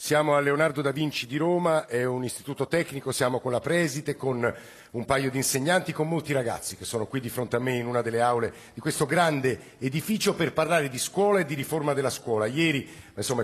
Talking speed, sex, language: 220 wpm, male, Italian